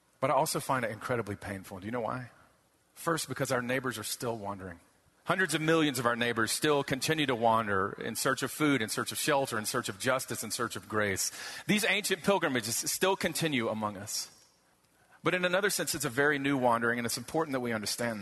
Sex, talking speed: male, 215 wpm